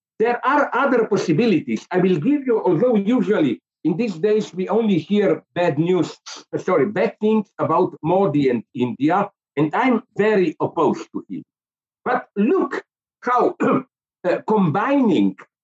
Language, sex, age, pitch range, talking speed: English, male, 60-79, 155-225 Hz, 140 wpm